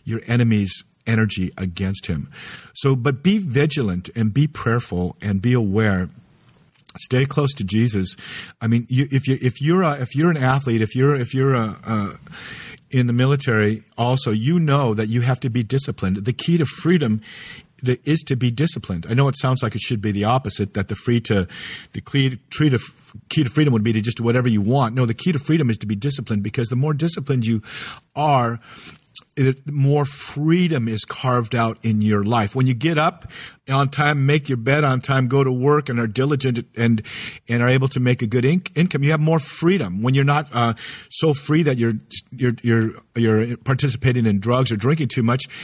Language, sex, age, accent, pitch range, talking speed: English, male, 50-69, American, 115-145 Hz, 205 wpm